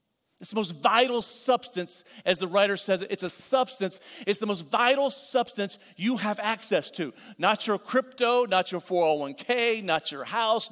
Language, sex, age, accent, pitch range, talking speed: English, male, 40-59, American, 185-240 Hz, 170 wpm